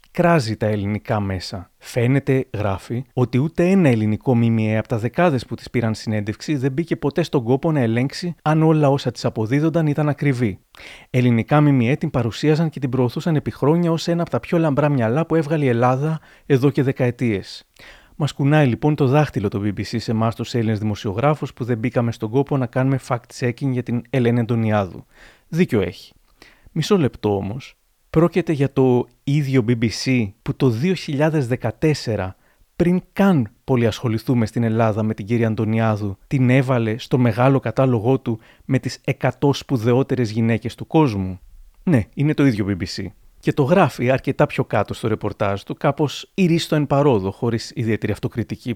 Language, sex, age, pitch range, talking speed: Greek, male, 30-49, 115-145 Hz, 165 wpm